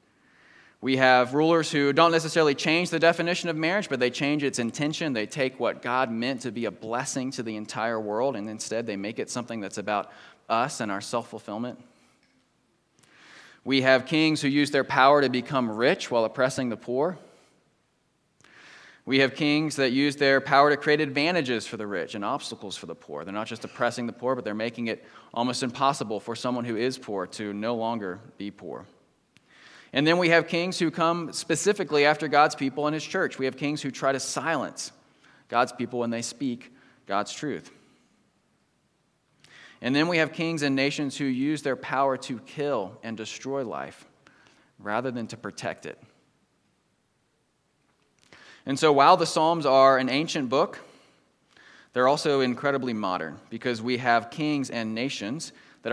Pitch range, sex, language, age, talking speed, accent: 115-150 Hz, male, English, 20-39, 175 wpm, American